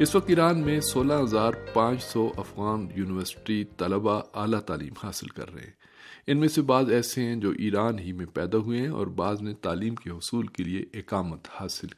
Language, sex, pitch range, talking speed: Urdu, male, 100-120 Hz, 195 wpm